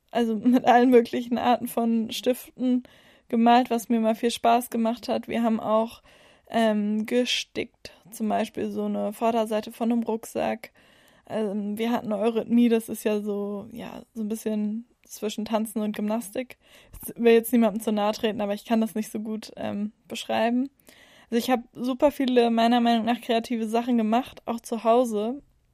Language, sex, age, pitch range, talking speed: German, female, 10-29, 220-245 Hz, 175 wpm